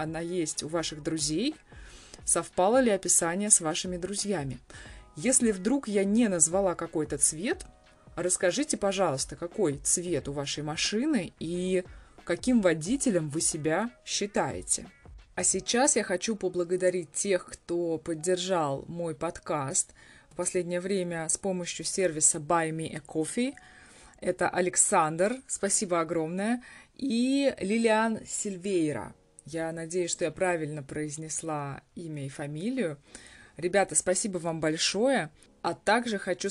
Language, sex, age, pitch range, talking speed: Russian, female, 20-39, 160-200 Hz, 120 wpm